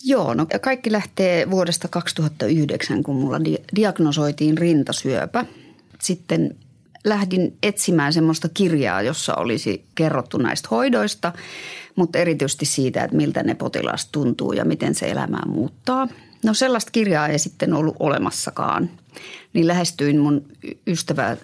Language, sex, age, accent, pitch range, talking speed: Finnish, female, 30-49, native, 150-200 Hz, 125 wpm